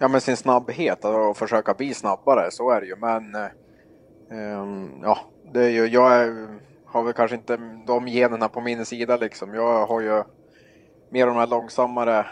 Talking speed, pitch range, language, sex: 195 wpm, 105-120 Hz, Swedish, male